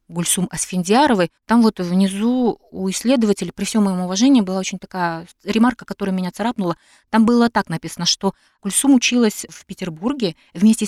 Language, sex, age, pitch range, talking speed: Russian, female, 30-49, 170-225 Hz, 155 wpm